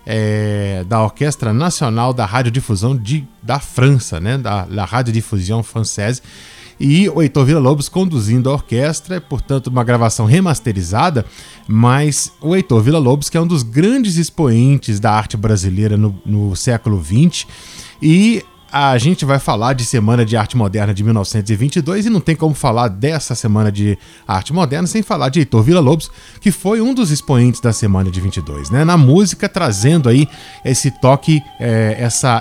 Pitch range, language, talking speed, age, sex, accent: 115-155 Hz, Portuguese, 165 wpm, 20-39, male, Brazilian